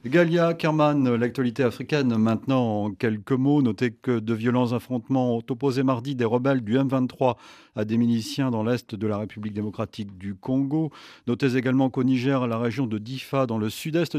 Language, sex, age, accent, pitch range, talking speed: French, male, 40-59, French, 115-145 Hz, 180 wpm